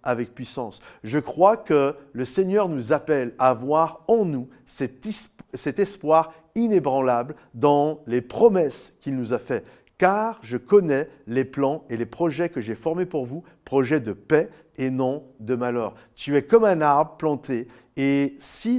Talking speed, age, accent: 170 wpm, 50-69, French